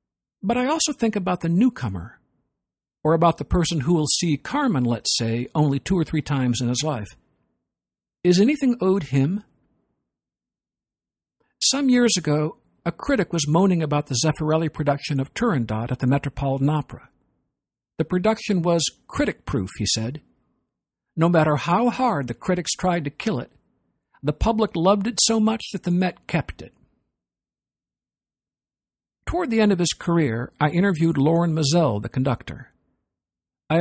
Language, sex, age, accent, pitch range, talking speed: English, male, 60-79, American, 140-190 Hz, 155 wpm